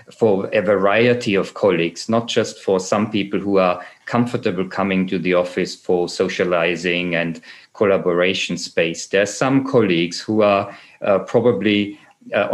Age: 40-59